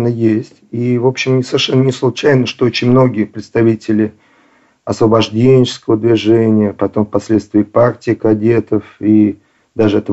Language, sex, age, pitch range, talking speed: Russian, male, 40-59, 105-130 Hz, 120 wpm